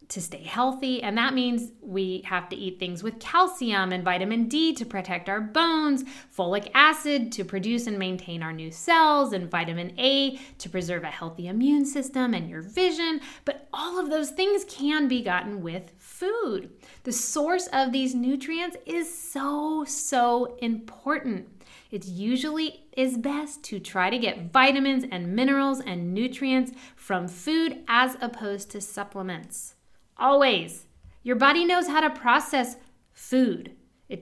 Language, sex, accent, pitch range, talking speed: English, female, American, 195-275 Hz, 155 wpm